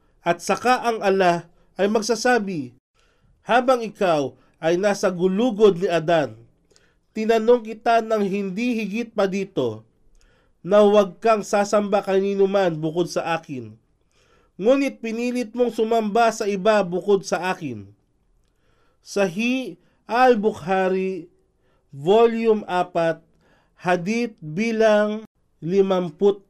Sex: male